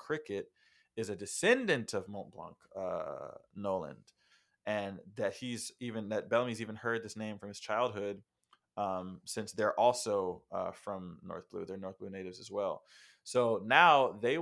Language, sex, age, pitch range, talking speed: English, male, 20-39, 100-115 Hz, 155 wpm